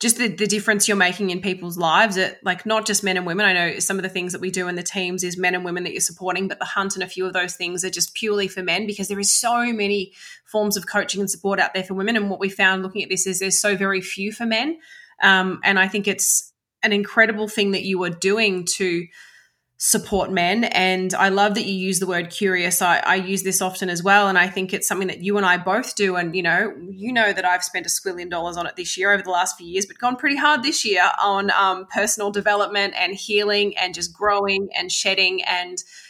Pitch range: 185-210 Hz